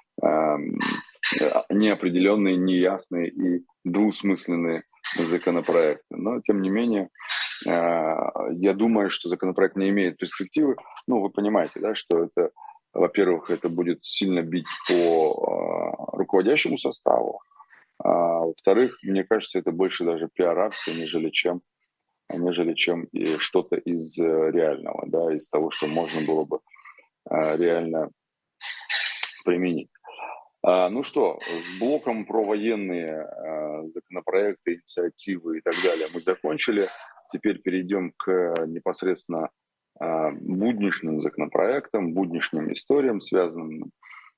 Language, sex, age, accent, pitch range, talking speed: Russian, male, 20-39, native, 85-100 Hz, 105 wpm